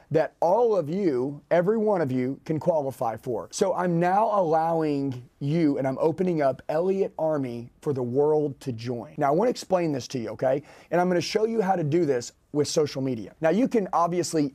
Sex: male